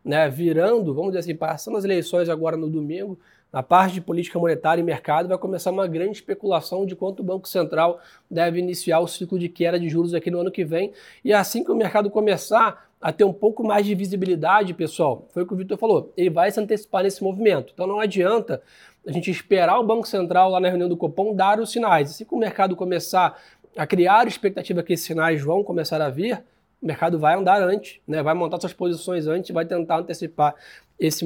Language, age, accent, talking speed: Portuguese, 20-39, Brazilian, 225 wpm